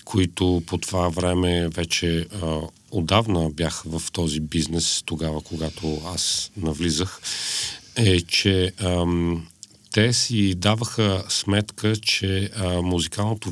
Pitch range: 85-100 Hz